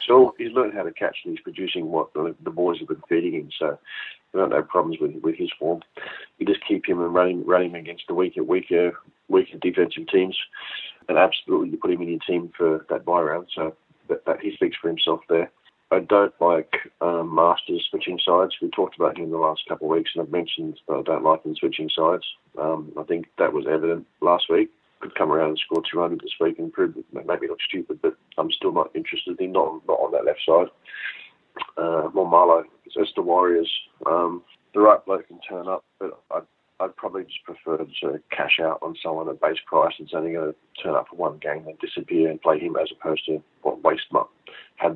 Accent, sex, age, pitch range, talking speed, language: Australian, male, 40-59, 335-395 Hz, 230 wpm, English